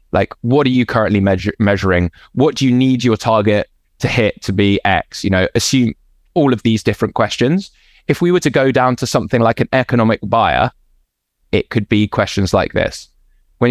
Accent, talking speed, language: British, 195 wpm, English